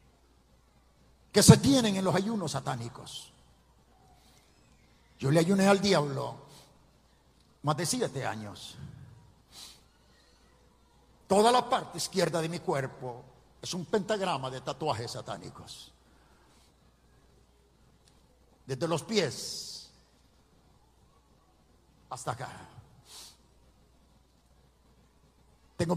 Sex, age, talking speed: male, 50-69, 80 wpm